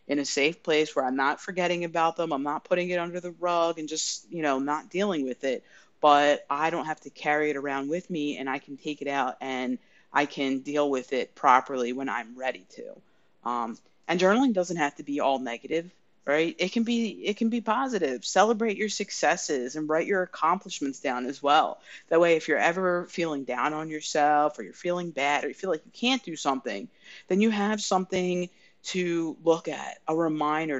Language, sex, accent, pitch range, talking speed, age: English, female, American, 140-180 Hz, 210 wpm, 30-49